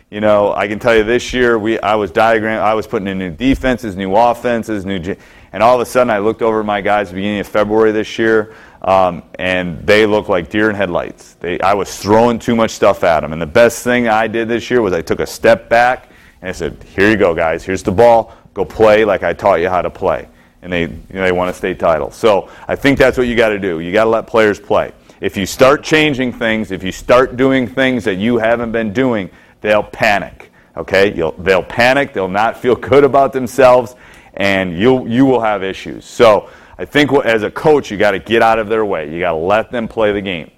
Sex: male